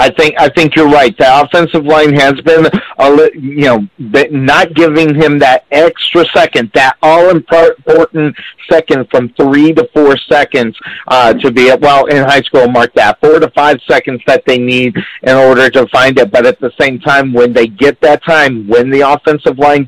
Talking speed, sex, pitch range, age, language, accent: 195 wpm, male, 130-155 Hz, 50-69, English, American